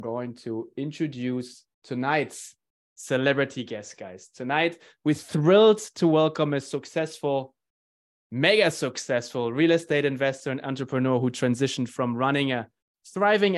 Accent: German